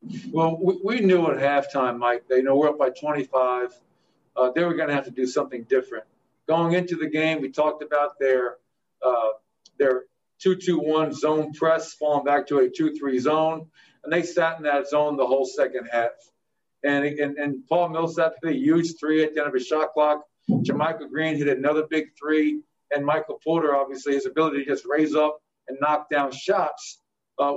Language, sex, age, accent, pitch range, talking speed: English, male, 50-69, American, 140-170 Hz, 195 wpm